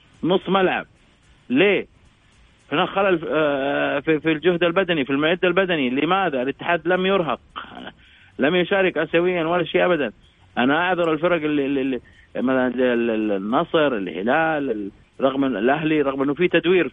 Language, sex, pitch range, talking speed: Arabic, male, 125-170 Hz, 120 wpm